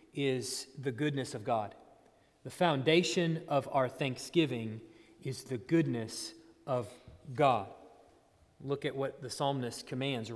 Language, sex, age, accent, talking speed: English, male, 30-49, American, 120 wpm